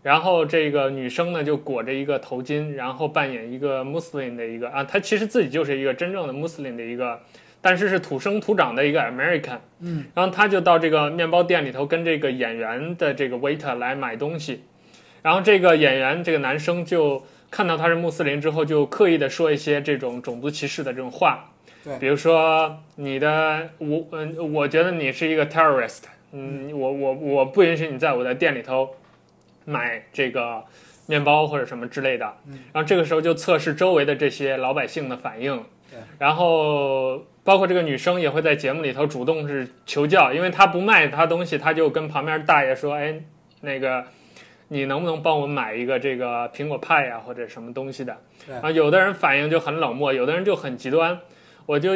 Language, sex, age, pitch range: Chinese, male, 20-39, 135-165 Hz